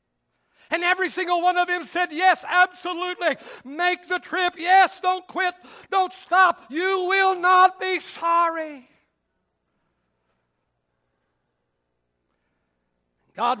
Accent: American